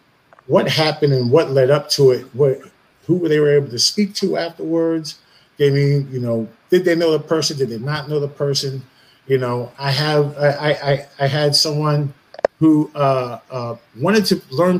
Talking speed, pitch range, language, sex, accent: 195 wpm, 135-165 Hz, English, male, American